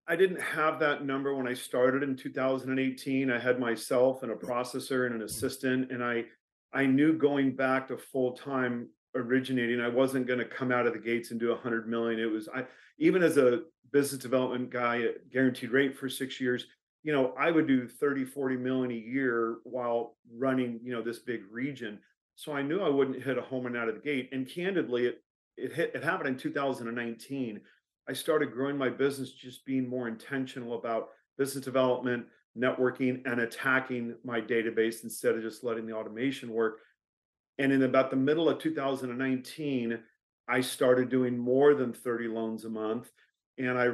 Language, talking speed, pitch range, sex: English, 185 wpm, 120-135 Hz, male